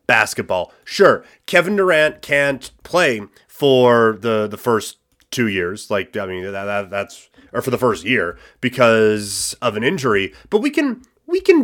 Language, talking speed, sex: English, 165 wpm, male